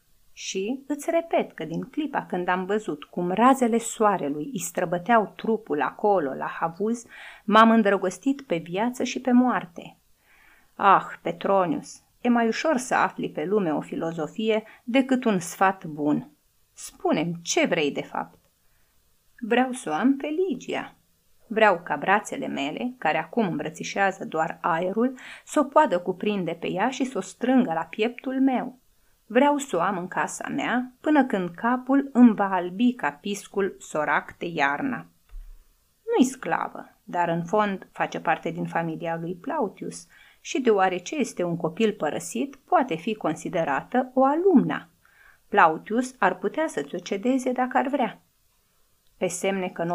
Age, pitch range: 30-49, 180-255 Hz